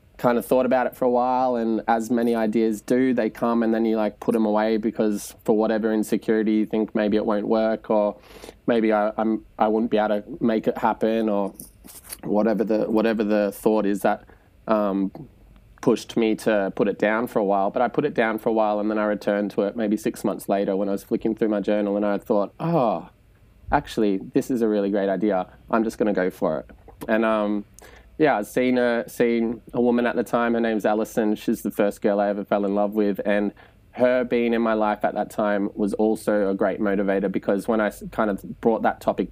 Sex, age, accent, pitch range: male, 20-39, Australian, 100-115 Hz